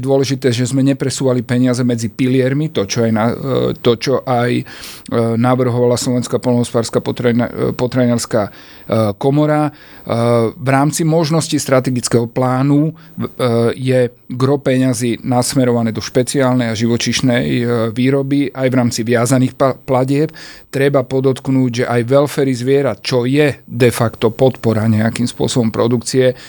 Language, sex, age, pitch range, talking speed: Slovak, male, 40-59, 120-135 Hz, 110 wpm